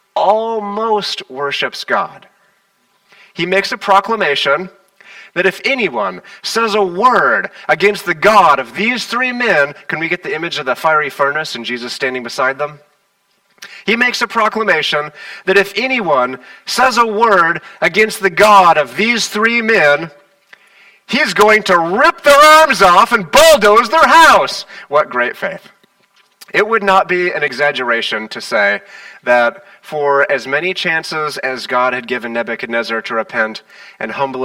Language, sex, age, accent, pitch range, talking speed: English, male, 30-49, American, 160-200 Hz, 150 wpm